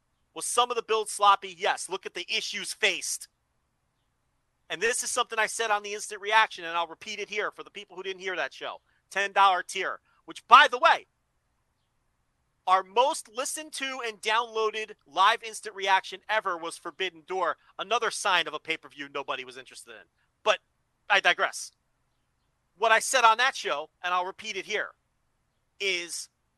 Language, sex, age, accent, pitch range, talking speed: English, male, 40-59, American, 175-220 Hz, 175 wpm